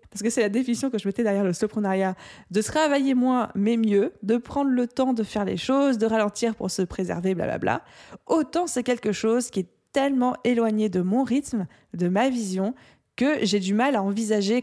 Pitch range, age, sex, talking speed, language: 195-240 Hz, 20-39, female, 205 wpm, French